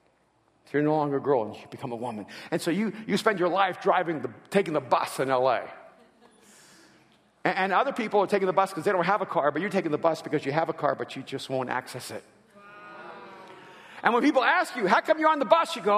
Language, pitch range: English, 170-275 Hz